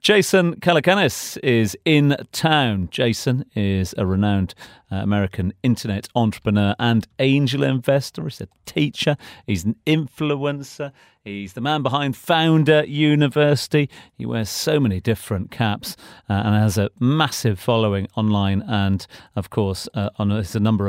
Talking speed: 140 wpm